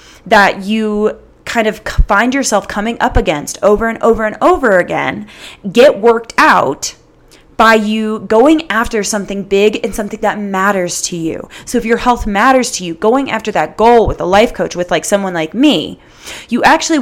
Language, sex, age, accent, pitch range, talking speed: English, female, 20-39, American, 205-260 Hz, 185 wpm